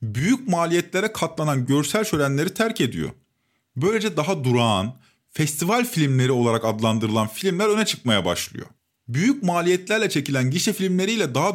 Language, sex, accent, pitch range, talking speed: Turkish, male, native, 125-190 Hz, 125 wpm